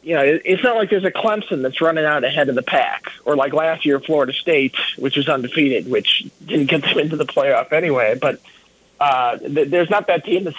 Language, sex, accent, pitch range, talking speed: English, male, American, 125-155 Hz, 225 wpm